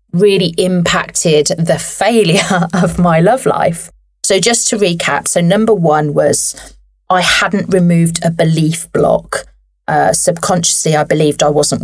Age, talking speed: 30-49, 140 wpm